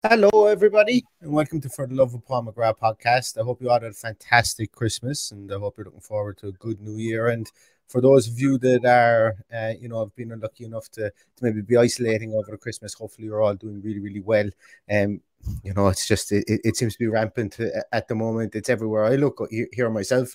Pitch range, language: 105-130 Hz, English